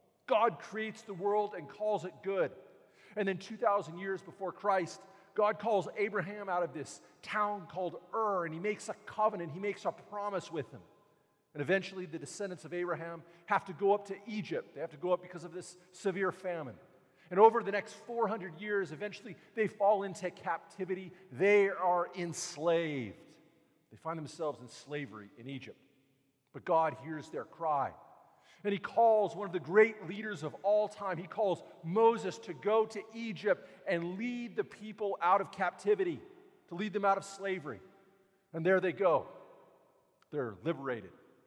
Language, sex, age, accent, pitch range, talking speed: English, male, 40-59, American, 170-205 Hz, 170 wpm